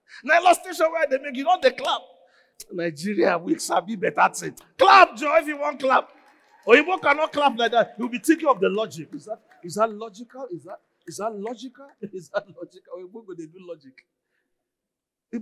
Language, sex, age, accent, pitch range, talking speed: English, male, 40-59, Nigerian, 170-270 Hz, 200 wpm